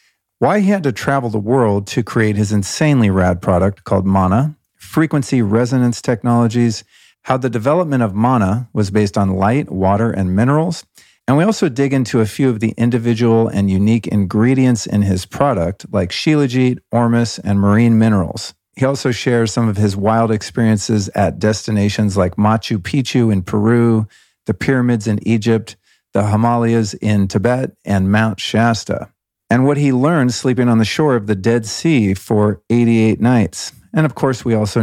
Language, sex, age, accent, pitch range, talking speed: English, male, 50-69, American, 100-125 Hz, 170 wpm